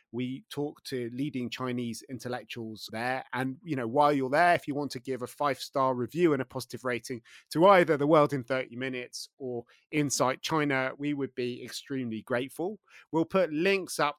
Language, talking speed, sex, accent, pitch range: English, 185 wpm, male, British, 125-160 Hz